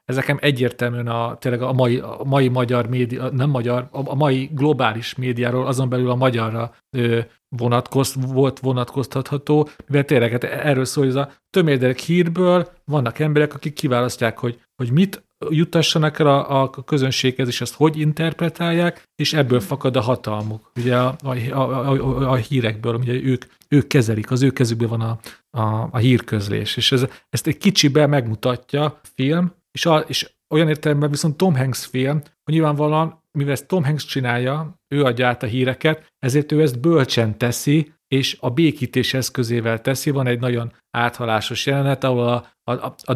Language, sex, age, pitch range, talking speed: Hungarian, male, 40-59, 125-150 Hz, 165 wpm